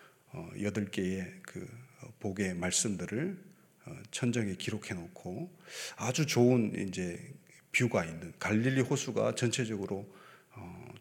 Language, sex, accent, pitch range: Korean, male, native, 110-170 Hz